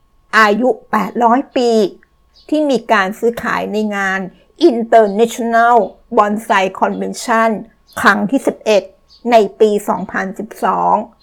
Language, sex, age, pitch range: Thai, female, 60-79, 195-240 Hz